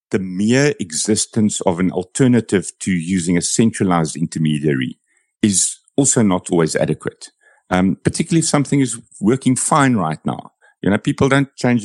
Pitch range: 90-130 Hz